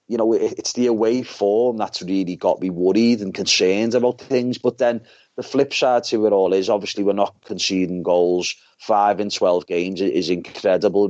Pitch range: 95-115 Hz